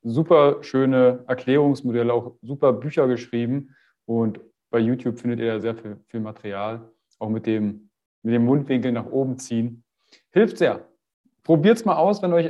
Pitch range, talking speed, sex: 120-165 Hz, 165 wpm, male